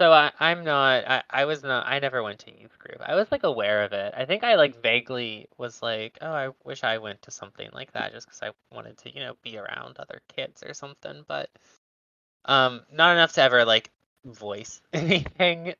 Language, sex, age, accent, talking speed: English, male, 20-39, American, 215 wpm